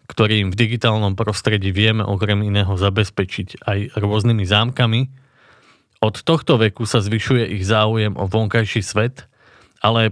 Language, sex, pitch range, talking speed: Slovak, male, 105-125 Hz, 135 wpm